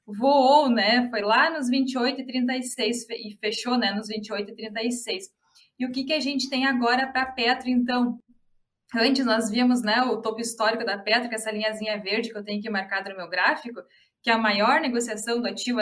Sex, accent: female, Brazilian